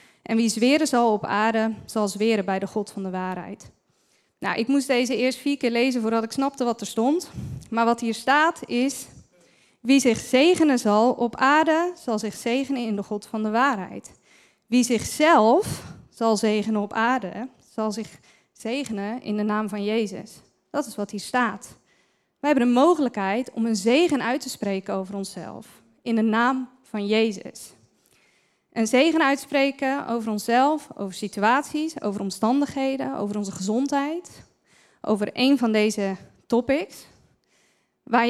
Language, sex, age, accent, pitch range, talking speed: Dutch, female, 20-39, Dutch, 215-265 Hz, 160 wpm